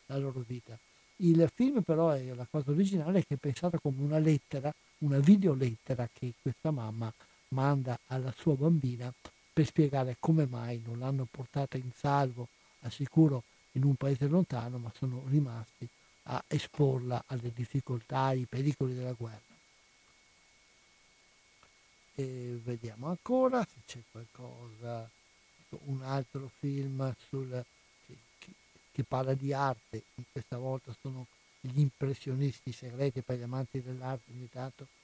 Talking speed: 130 wpm